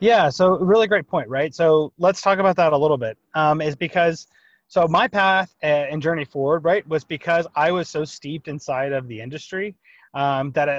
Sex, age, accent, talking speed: male, 30-49, American, 205 wpm